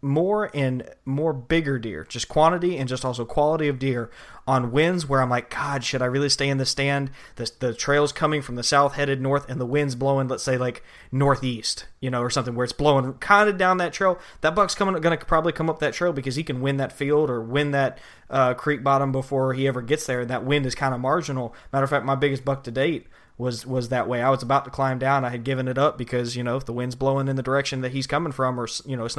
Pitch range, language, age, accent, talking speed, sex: 125-140 Hz, English, 20-39, American, 265 wpm, male